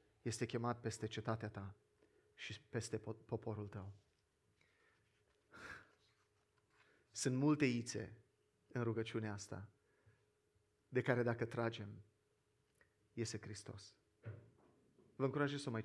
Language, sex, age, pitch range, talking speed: Romanian, male, 30-49, 115-170 Hz, 100 wpm